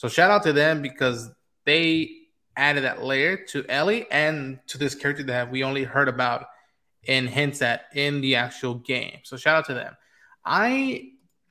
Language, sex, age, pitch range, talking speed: English, male, 20-39, 130-160 Hz, 175 wpm